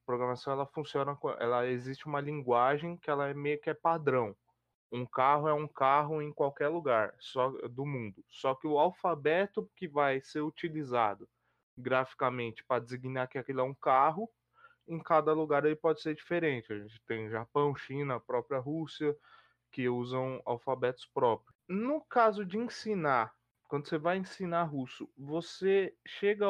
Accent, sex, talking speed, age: Brazilian, male, 160 wpm, 20-39